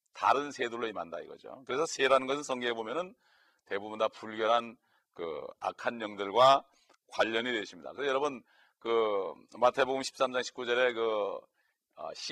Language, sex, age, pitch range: Korean, male, 40-59, 115-145 Hz